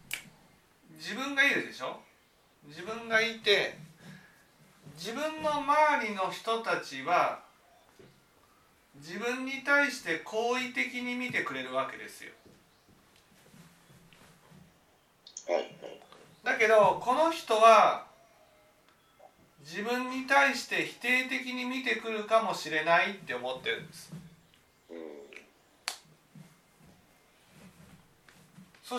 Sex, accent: male, native